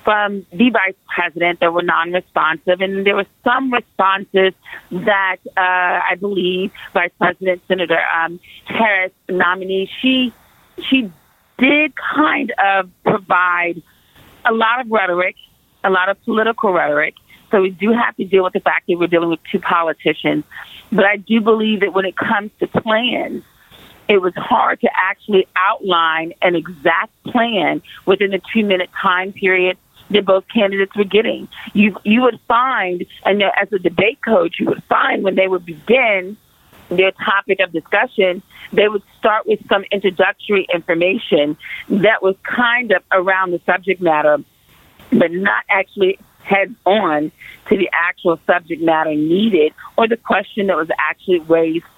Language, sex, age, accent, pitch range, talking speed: English, female, 40-59, American, 180-220 Hz, 155 wpm